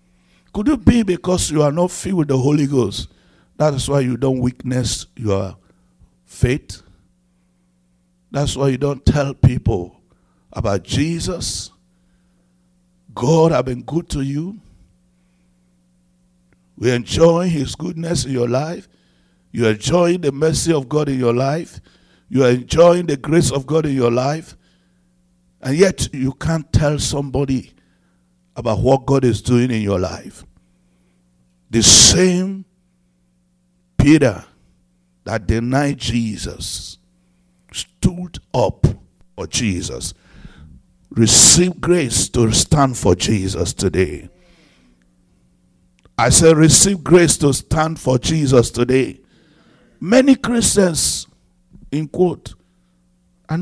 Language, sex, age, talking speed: English, male, 60-79, 115 wpm